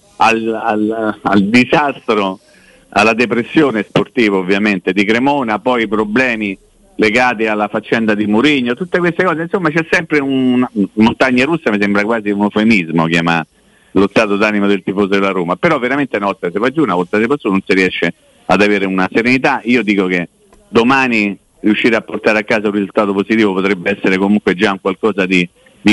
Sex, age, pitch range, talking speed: male, 50-69, 95-115 Hz, 185 wpm